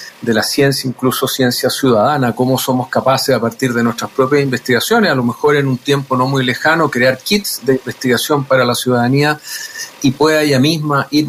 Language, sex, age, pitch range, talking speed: Spanish, male, 40-59, 130-145 Hz, 190 wpm